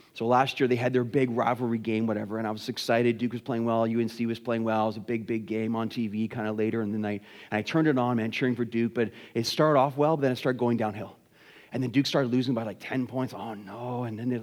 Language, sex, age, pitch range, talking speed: English, male, 30-49, 115-190 Hz, 285 wpm